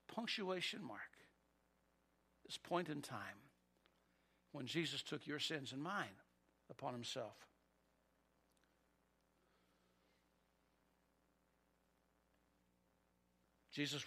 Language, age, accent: English, 60-79, American